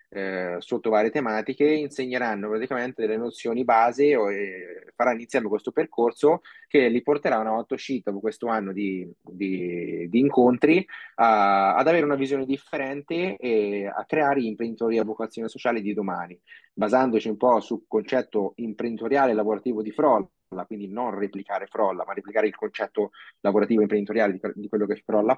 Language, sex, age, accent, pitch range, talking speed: Italian, male, 20-39, native, 105-130 Hz, 160 wpm